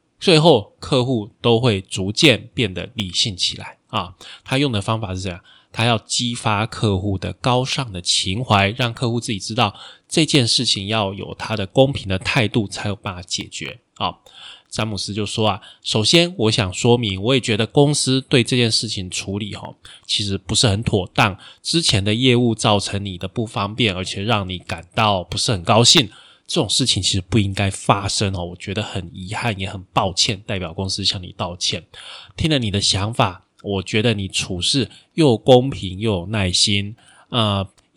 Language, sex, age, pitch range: Chinese, male, 20-39, 100-120 Hz